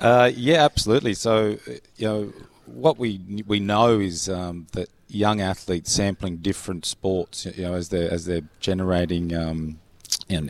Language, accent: English, Australian